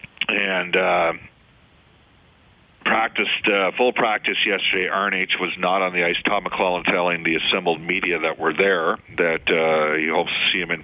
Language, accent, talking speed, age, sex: English, American, 165 wpm, 50-69, male